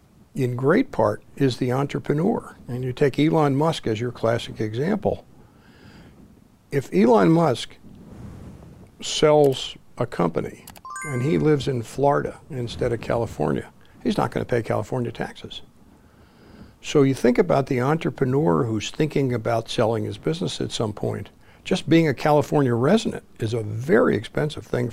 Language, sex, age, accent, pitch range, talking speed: English, male, 60-79, American, 115-140 Hz, 145 wpm